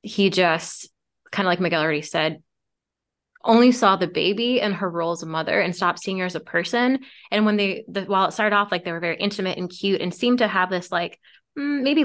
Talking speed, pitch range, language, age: 235 wpm, 170-210 Hz, English, 20-39